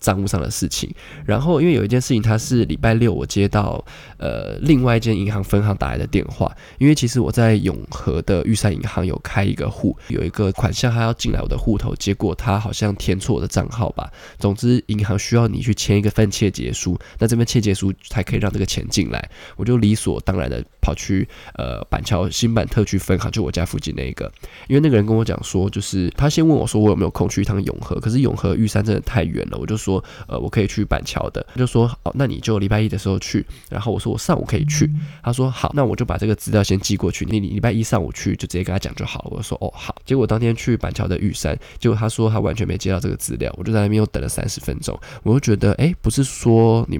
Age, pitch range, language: 20-39, 100-125 Hz, Chinese